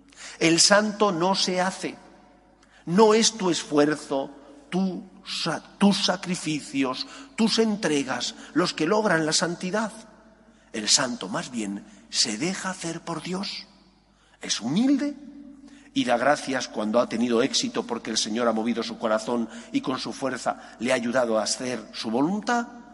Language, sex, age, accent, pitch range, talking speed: Spanish, male, 50-69, Spanish, 140-220 Hz, 140 wpm